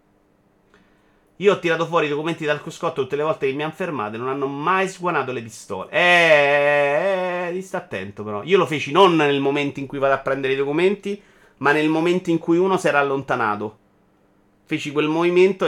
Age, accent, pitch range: 30-49, native, 110-145 Hz